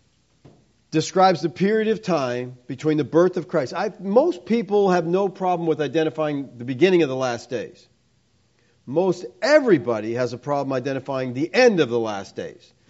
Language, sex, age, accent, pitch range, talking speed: English, male, 50-69, American, 140-200 Hz, 165 wpm